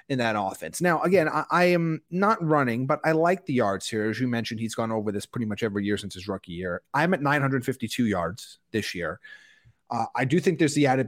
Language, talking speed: English, 240 wpm